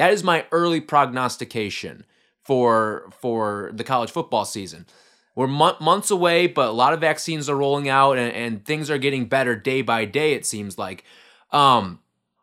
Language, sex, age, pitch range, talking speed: English, male, 20-39, 115-160 Hz, 170 wpm